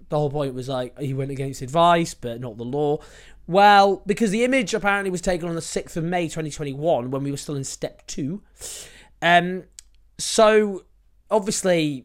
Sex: male